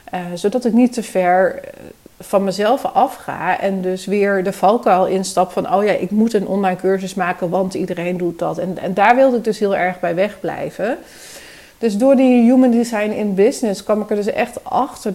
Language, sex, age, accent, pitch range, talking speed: Dutch, female, 40-59, Dutch, 185-220 Hz, 200 wpm